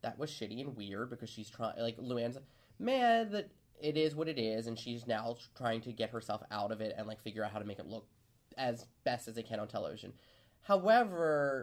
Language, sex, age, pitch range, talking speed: English, male, 20-39, 115-160 Hz, 225 wpm